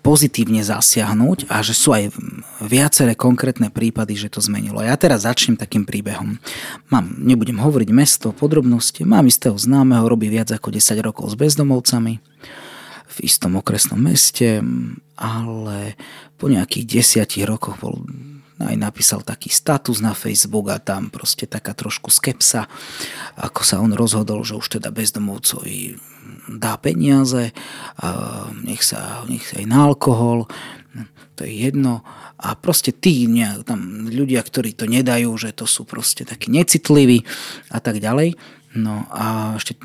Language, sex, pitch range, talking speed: Slovak, male, 110-135 Hz, 145 wpm